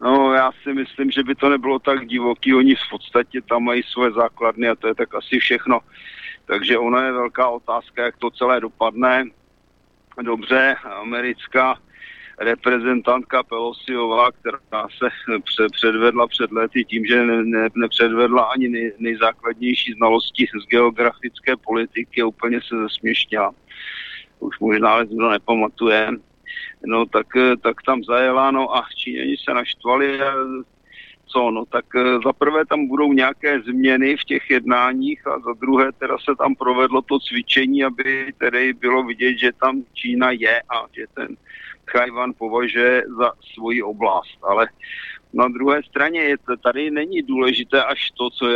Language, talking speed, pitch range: Slovak, 145 wpm, 120-130 Hz